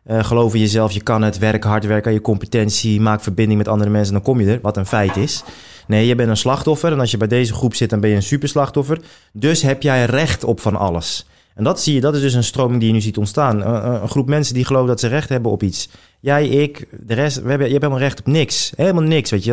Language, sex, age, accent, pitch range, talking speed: Dutch, male, 20-39, Dutch, 110-135 Hz, 290 wpm